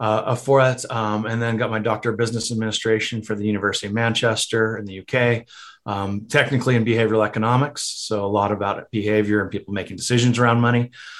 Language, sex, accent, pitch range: English, male, American, 110-130 Hz